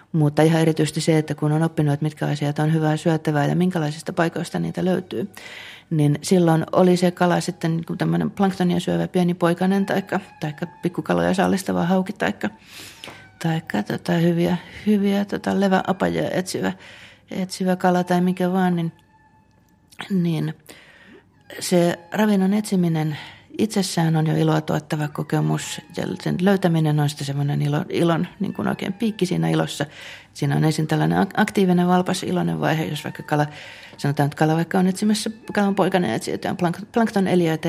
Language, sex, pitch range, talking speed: Finnish, female, 155-185 Hz, 150 wpm